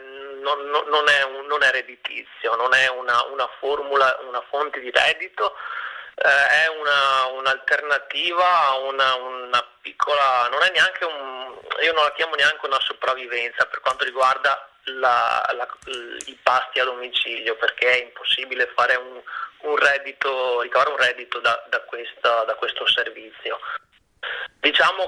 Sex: male